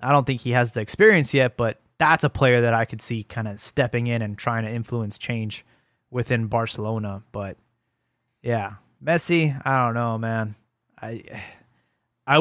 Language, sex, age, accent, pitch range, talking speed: English, male, 20-39, American, 120-150 Hz, 175 wpm